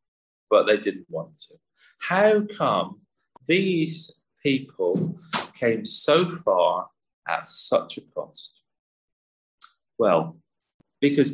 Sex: male